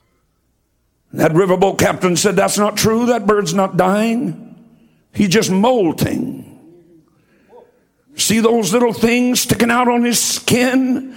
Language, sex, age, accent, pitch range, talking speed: English, male, 60-79, American, 210-265 Hz, 125 wpm